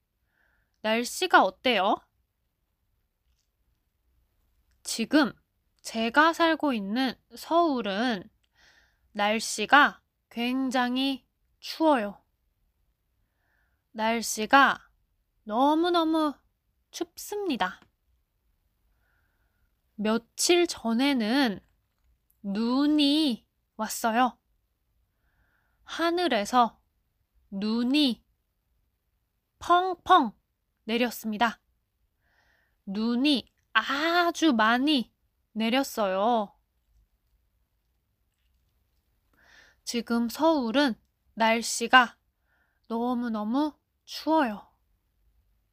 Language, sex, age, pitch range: Korean, female, 20-39, 195-275 Hz